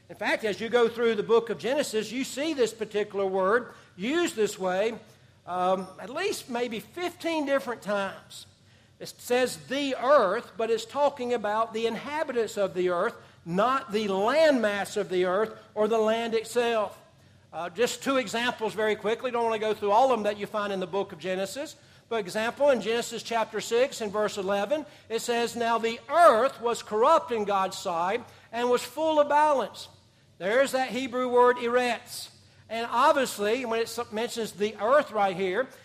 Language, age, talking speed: English, 60-79, 180 wpm